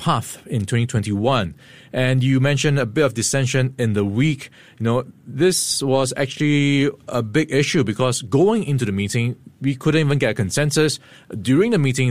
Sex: male